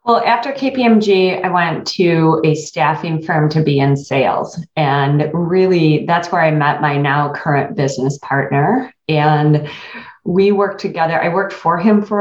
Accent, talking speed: American, 160 wpm